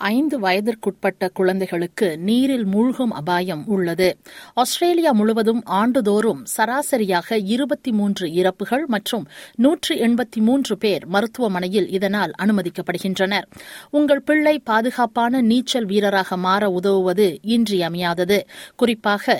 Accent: native